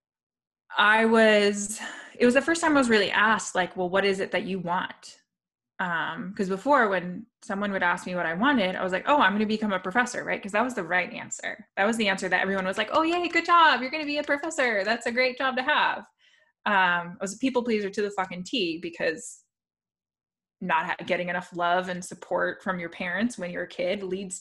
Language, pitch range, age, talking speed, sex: English, 180-235 Hz, 20-39, 235 wpm, female